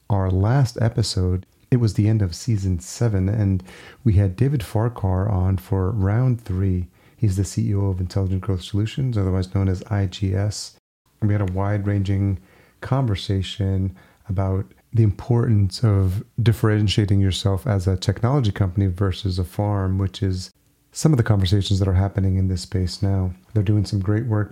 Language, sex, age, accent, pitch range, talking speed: English, male, 30-49, American, 95-110 Hz, 165 wpm